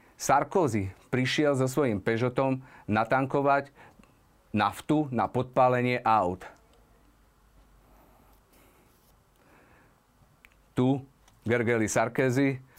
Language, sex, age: Slovak, male, 40-59